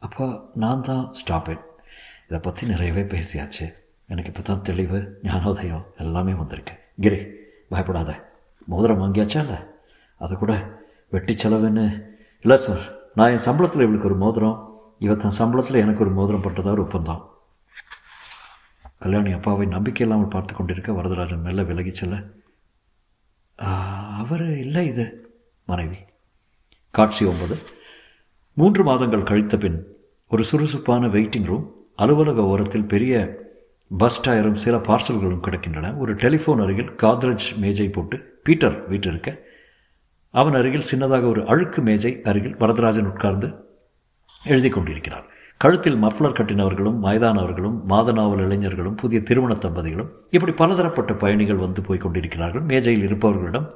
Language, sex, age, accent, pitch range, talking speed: Tamil, male, 50-69, native, 95-115 Hz, 115 wpm